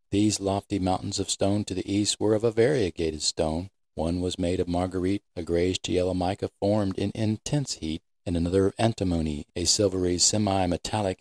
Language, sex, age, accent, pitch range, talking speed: English, male, 40-59, American, 85-100 Hz, 175 wpm